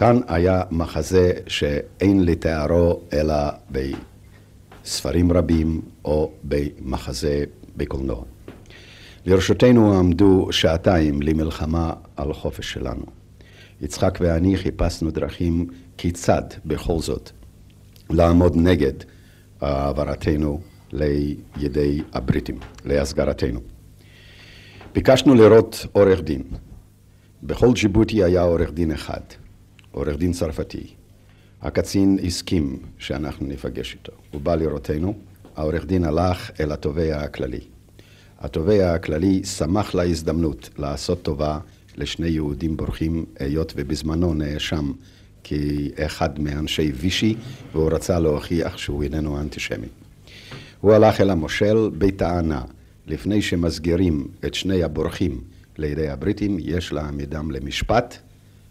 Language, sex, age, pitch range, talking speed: Hebrew, male, 60-79, 75-100 Hz, 95 wpm